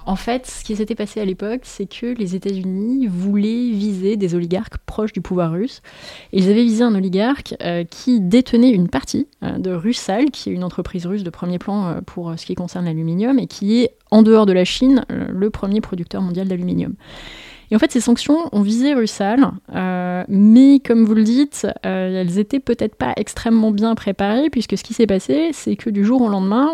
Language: French